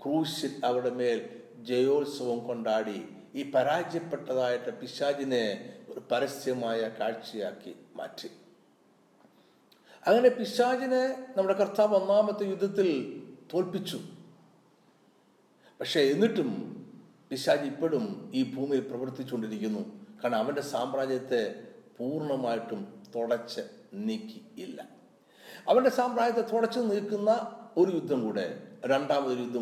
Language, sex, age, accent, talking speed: Malayalam, male, 60-79, native, 85 wpm